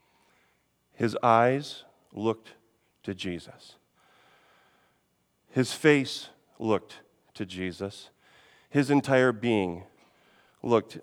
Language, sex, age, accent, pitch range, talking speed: English, male, 40-59, American, 120-165 Hz, 75 wpm